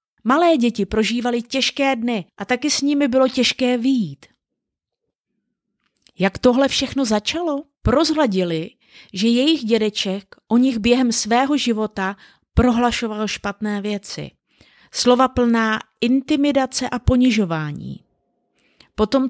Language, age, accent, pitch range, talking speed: Czech, 30-49, native, 205-265 Hz, 105 wpm